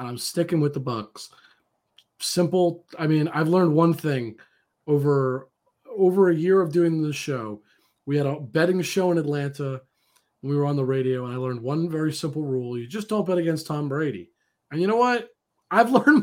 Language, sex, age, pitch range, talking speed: English, male, 30-49, 145-200 Hz, 200 wpm